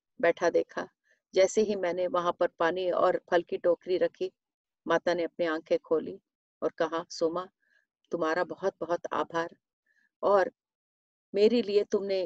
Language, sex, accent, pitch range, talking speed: Hindi, female, native, 180-220 Hz, 140 wpm